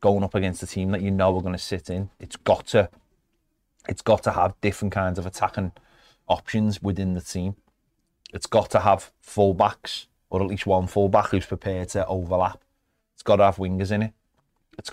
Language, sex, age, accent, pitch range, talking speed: English, male, 30-49, British, 95-105 Hz, 205 wpm